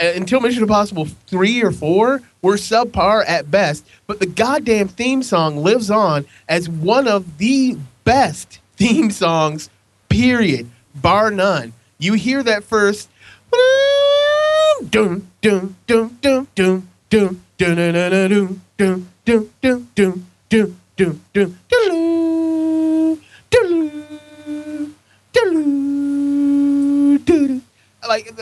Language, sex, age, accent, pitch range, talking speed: English, male, 30-49, American, 175-245 Hz, 70 wpm